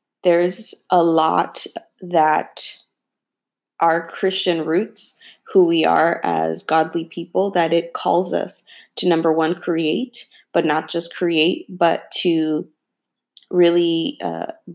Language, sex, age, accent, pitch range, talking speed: English, female, 20-39, American, 160-185 Hz, 120 wpm